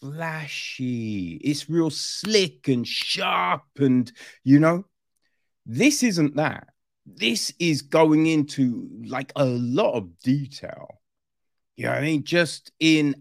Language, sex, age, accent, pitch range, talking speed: English, male, 30-49, British, 120-160 Hz, 125 wpm